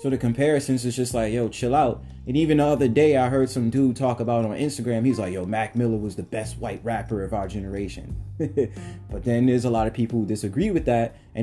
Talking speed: 245 wpm